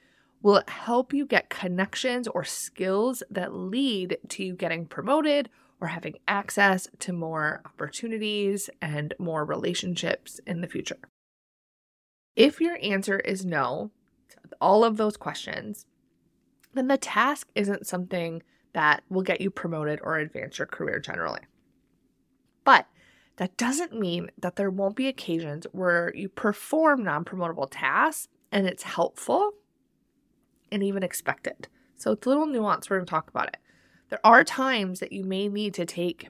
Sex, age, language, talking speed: female, 20-39, English, 150 wpm